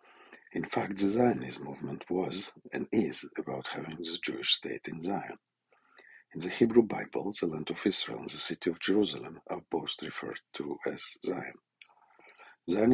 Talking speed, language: 160 wpm, English